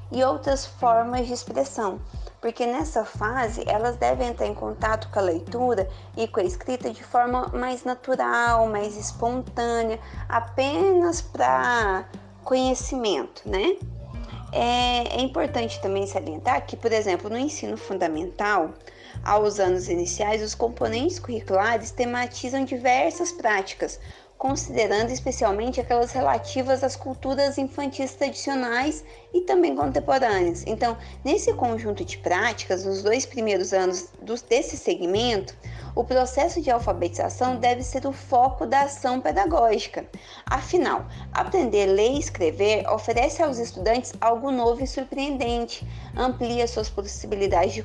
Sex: female